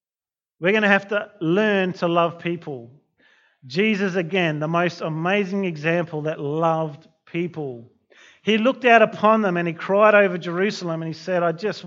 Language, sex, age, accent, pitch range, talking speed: English, male, 40-59, Australian, 160-205 Hz, 165 wpm